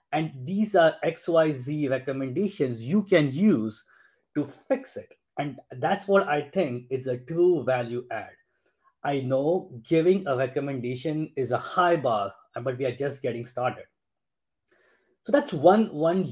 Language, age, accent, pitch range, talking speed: English, 20-39, Indian, 130-175 Hz, 145 wpm